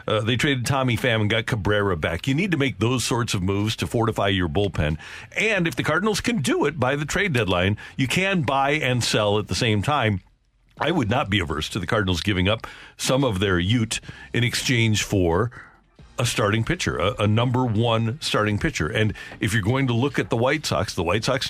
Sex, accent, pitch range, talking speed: male, American, 100-135 Hz, 225 wpm